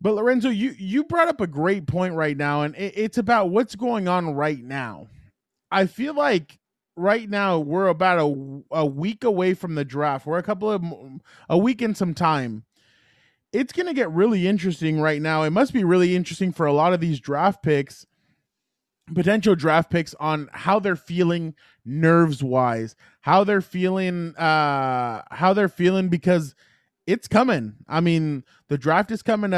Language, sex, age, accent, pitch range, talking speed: English, male, 20-39, American, 155-200 Hz, 175 wpm